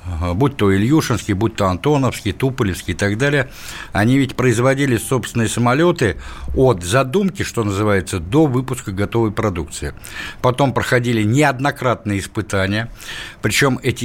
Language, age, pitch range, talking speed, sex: Russian, 60-79, 100-130 Hz, 125 wpm, male